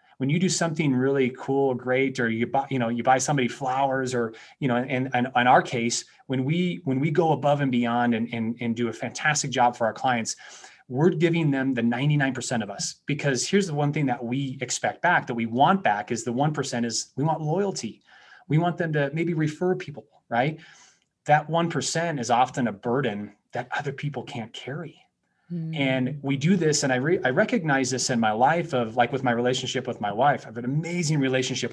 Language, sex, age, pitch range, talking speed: English, male, 30-49, 120-150 Hz, 215 wpm